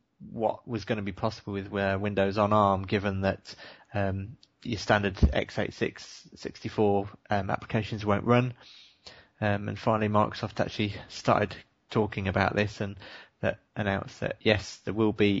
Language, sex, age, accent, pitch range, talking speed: English, male, 20-39, British, 100-110 Hz, 145 wpm